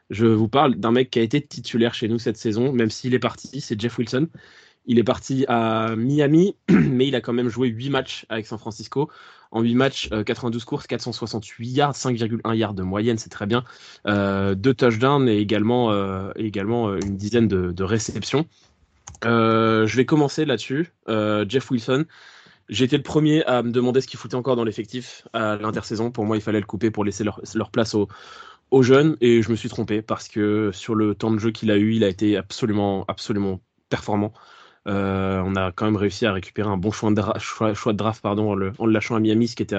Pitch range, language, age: 100-120 Hz, French, 20-39